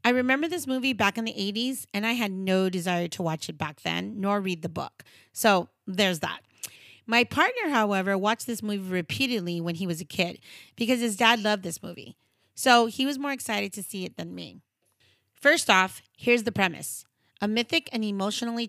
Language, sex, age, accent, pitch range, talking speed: English, female, 30-49, American, 180-225 Hz, 200 wpm